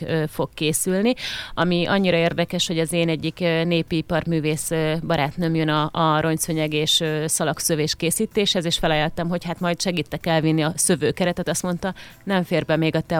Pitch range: 155-180 Hz